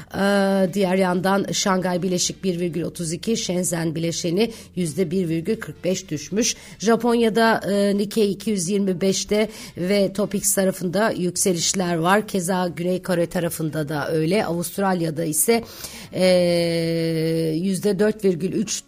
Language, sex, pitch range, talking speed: Turkish, female, 165-195 Hz, 90 wpm